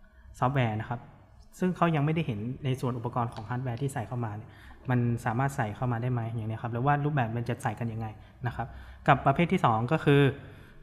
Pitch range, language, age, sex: 120-140 Hz, Thai, 20-39, male